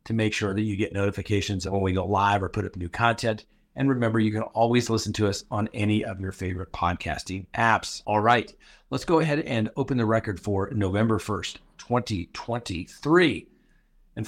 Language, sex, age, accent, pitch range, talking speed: English, male, 40-59, American, 100-125 Hz, 190 wpm